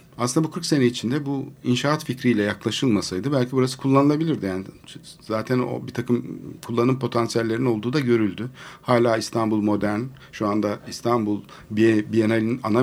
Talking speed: 140 wpm